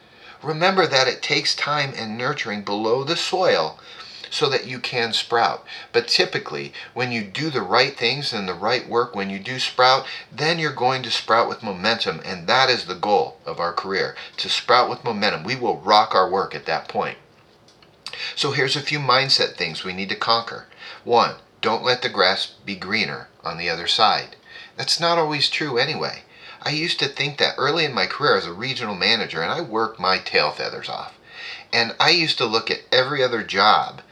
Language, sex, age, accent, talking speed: English, male, 40-59, American, 200 wpm